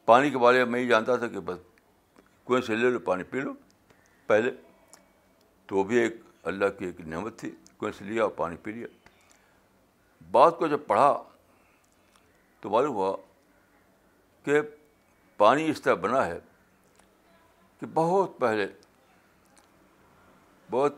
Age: 60-79